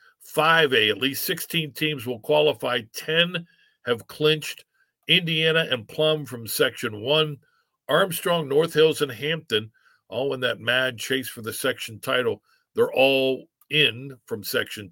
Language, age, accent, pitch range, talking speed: English, 50-69, American, 120-165 Hz, 140 wpm